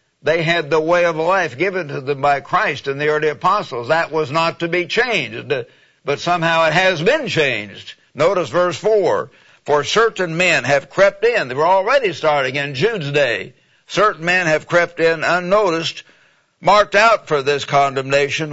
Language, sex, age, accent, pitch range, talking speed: English, male, 60-79, American, 145-175 Hz, 175 wpm